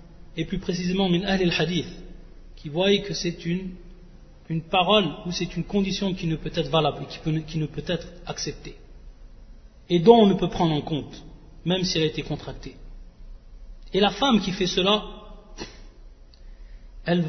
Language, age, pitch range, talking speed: French, 40-59, 155-195 Hz, 175 wpm